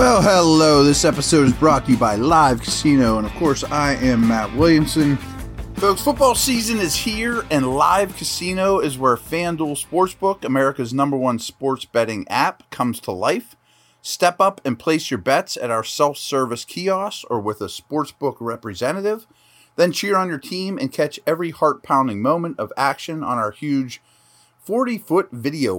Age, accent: 30-49, American